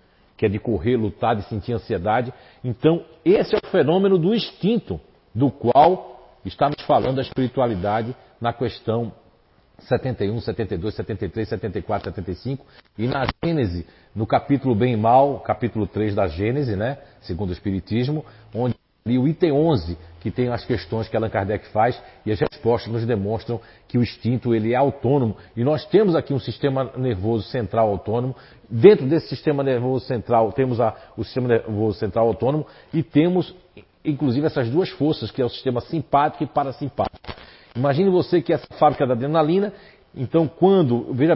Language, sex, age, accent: Portuguese, male, 50-69, Brazilian